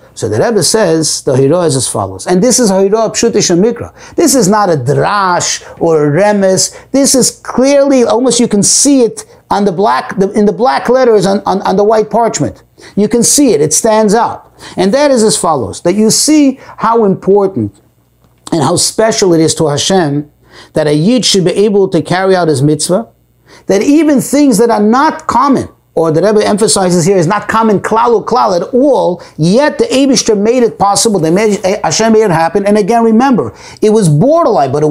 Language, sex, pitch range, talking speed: English, male, 165-235 Hz, 210 wpm